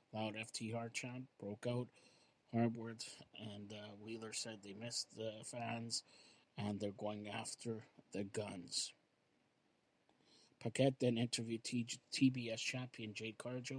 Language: English